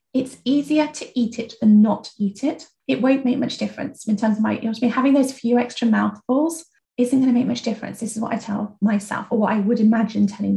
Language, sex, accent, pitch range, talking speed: English, female, British, 215-260 Hz, 250 wpm